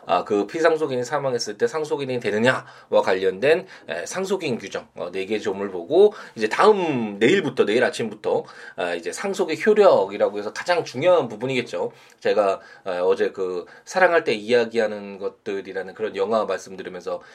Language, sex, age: Korean, male, 20-39